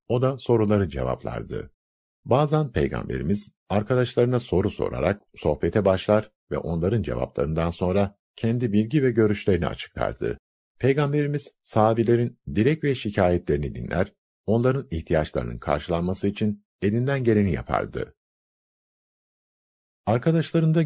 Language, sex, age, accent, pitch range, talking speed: Turkish, male, 50-69, native, 80-120 Hz, 100 wpm